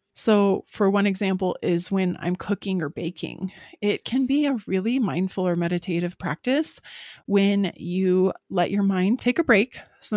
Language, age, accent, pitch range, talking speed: English, 20-39, American, 180-215 Hz, 165 wpm